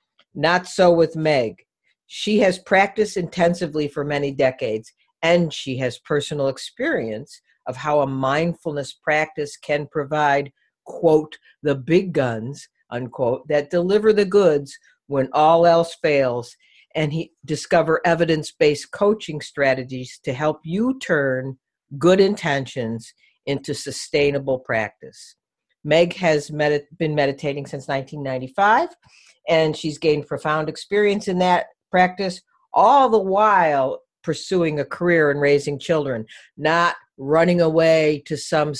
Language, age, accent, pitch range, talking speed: English, 50-69, American, 140-170 Hz, 125 wpm